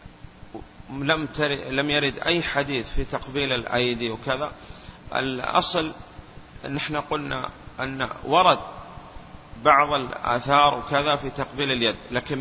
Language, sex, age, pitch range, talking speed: Arabic, male, 30-49, 125-150 Hz, 105 wpm